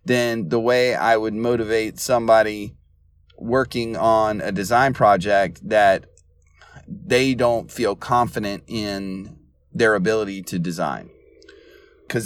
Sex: male